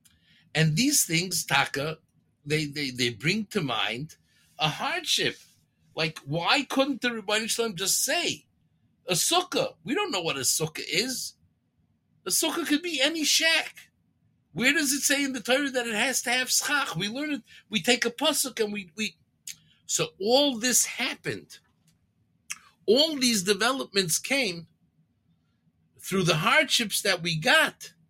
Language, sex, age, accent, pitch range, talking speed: English, male, 60-79, American, 160-250 Hz, 155 wpm